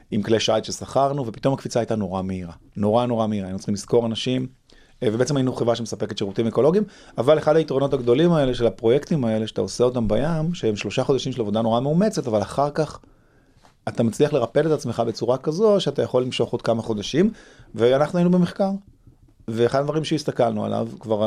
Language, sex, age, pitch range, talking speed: Hebrew, male, 30-49, 115-145 Hz, 185 wpm